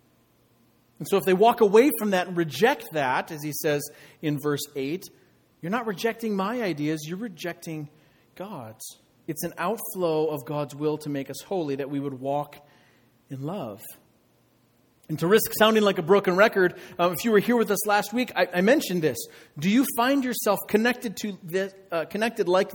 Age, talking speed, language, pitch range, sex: 40-59, 190 wpm, English, 155-210 Hz, male